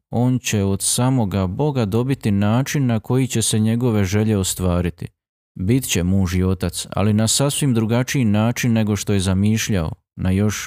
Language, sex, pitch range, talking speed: Croatian, male, 100-125 Hz, 170 wpm